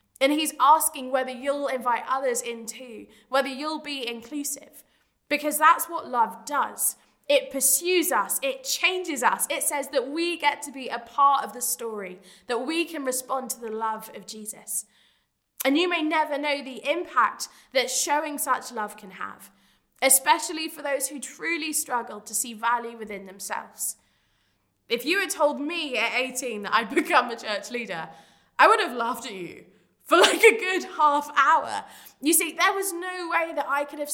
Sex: female